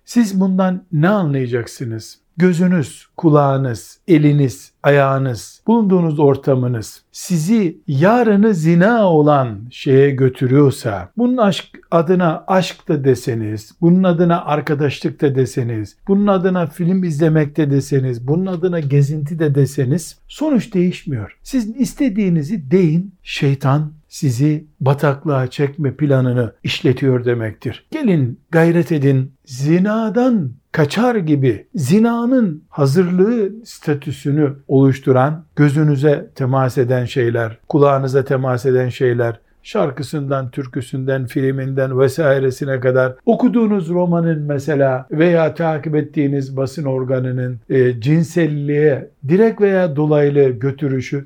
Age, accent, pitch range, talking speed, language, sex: 60-79, native, 135-175 Hz, 100 wpm, Turkish, male